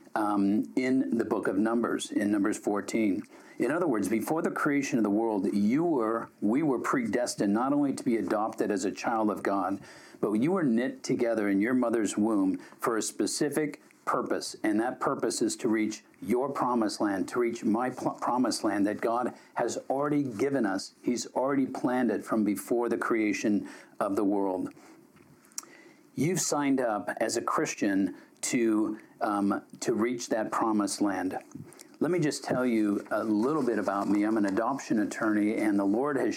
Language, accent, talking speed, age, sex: English, American, 180 wpm, 50-69, male